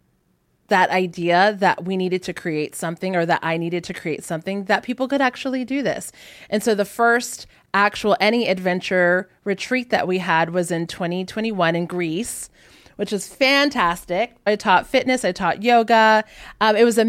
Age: 30-49